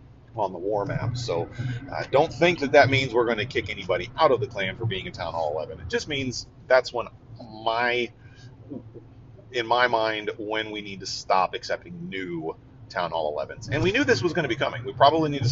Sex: male